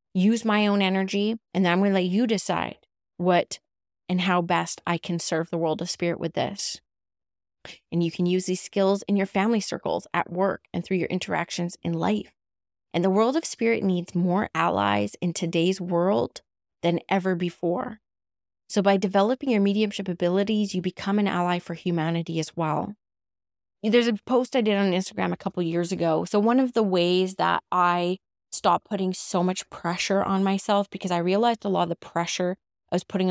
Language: English